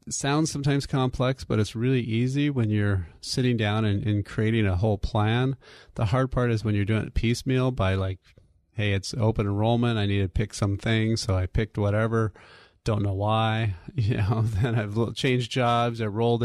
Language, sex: English, male